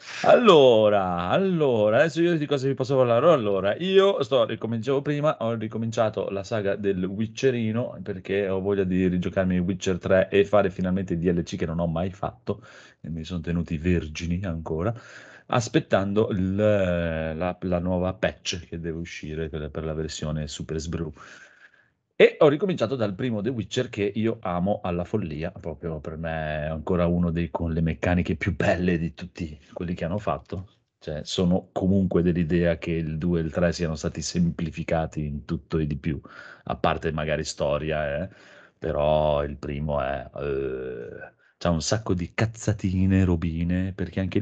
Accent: native